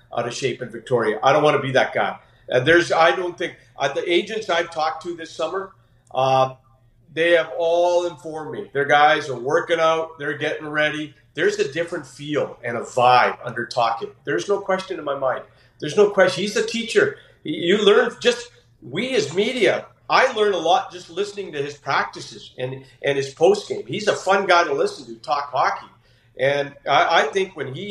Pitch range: 130-175 Hz